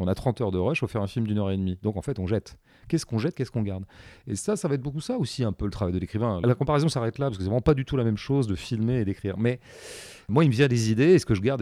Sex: male